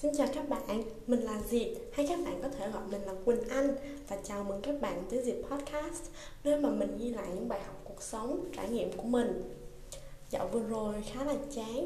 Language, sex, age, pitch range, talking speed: Vietnamese, female, 20-39, 210-275 Hz, 230 wpm